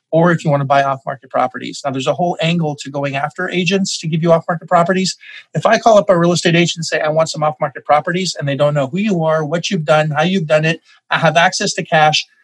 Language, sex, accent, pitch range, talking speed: English, male, American, 145-180 Hz, 270 wpm